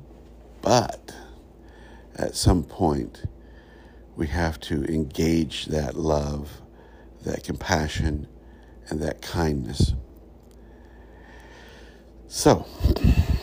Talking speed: 70 wpm